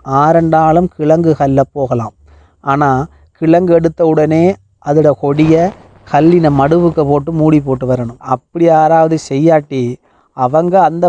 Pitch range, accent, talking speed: 130-160 Hz, native, 115 wpm